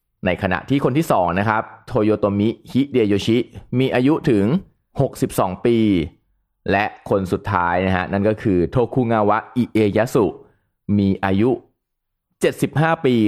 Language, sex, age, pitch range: Thai, male, 20-39, 90-120 Hz